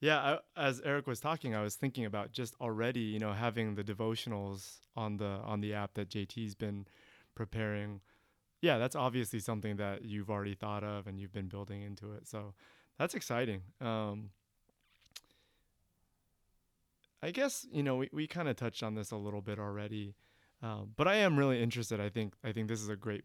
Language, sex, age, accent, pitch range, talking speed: English, male, 20-39, American, 105-125 Hz, 195 wpm